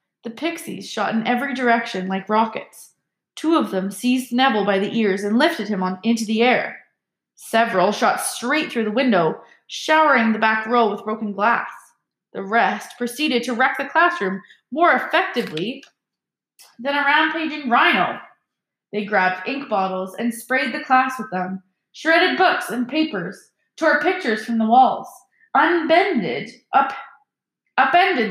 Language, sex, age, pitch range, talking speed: English, female, 20-39, 220-320 Hz, 145 wpm